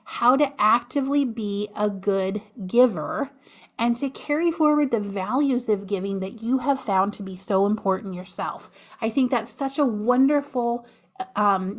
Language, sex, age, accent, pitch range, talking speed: English, female, 30-49, American, 200-265 Hz, 160 wpm